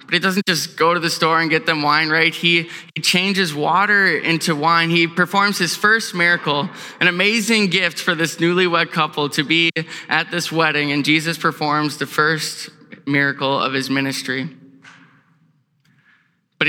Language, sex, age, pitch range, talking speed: English, male, 10-29, 150-180 Hz, 165 wpm